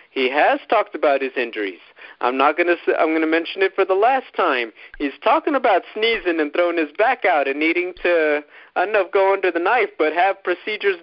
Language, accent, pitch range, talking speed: English, American, 170-265 Hz, 220 wpm